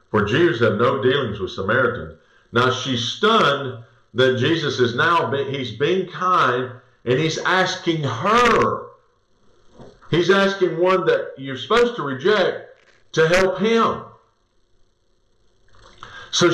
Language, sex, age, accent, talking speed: English, male, 50-69, American, 125 wpm